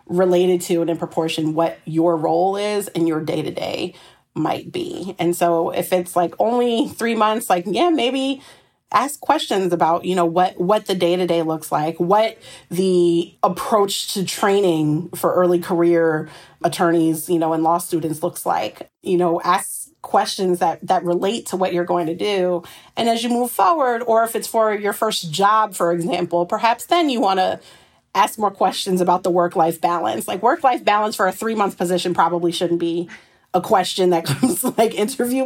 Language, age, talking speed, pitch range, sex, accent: English, 30-49, 180 wpm, 170-205 Hz, female, American